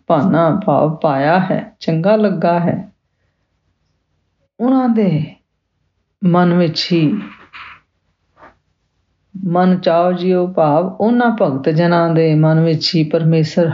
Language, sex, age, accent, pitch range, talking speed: English, female, 40-59, Indian, 145-185 Hz, 100 wpm